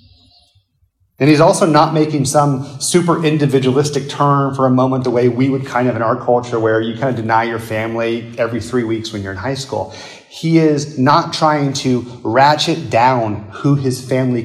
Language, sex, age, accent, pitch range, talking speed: English, male, 30-49, American, 115-150 Hz, 190 wpm